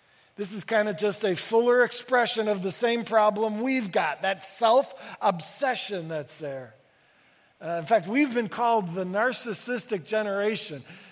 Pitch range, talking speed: 185-230 Hz, 145 wpm